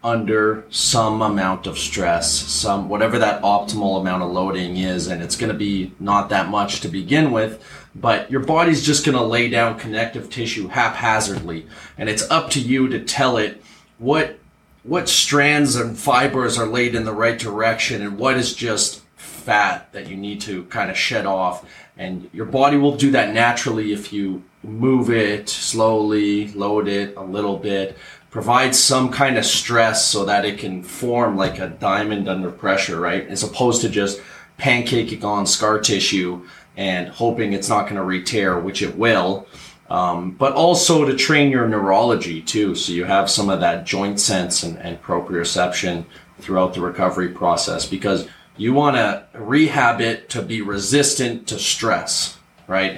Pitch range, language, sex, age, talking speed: 95-120 Hz, English, male, 30-49, 175 wpm